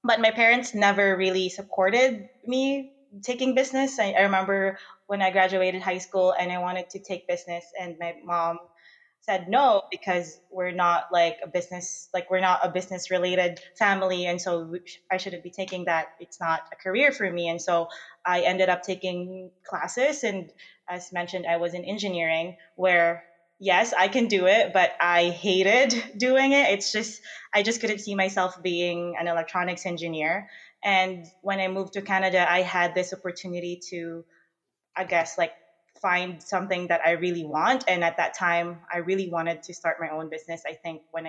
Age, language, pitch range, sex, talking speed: 20-39, English, 170-195 Hz, female, 180 wpm